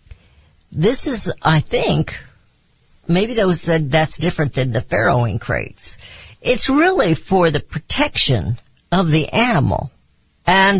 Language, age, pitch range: English, 50-69, 135-195 Hz